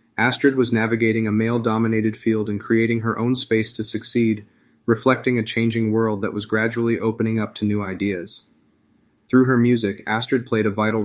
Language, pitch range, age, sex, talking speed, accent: English, 105-115 Hz, 30-49, male, 175 wpm, American